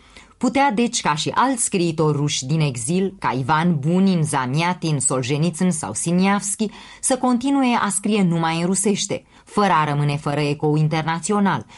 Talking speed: 150 wpm